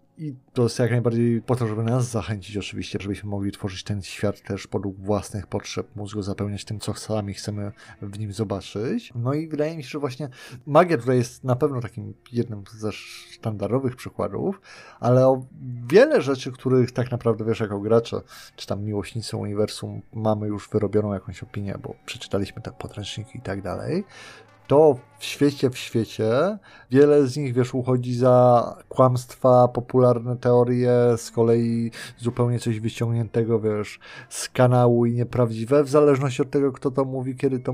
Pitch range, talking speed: 110-130 Hz, 170 wpm